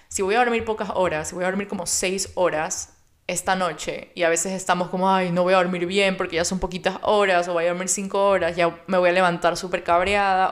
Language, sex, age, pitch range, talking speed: Spanish, female, 20-39, 170-190 Hz, 250 wpm